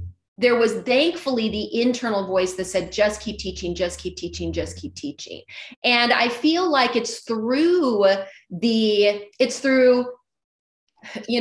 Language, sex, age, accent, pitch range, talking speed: English, female, 30-49, American, 200-255 Hz, 140 wpm